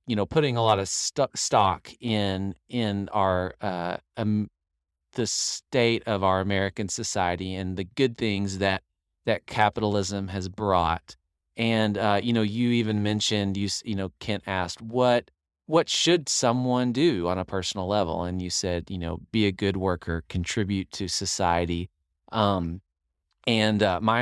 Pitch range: 90-105 Hz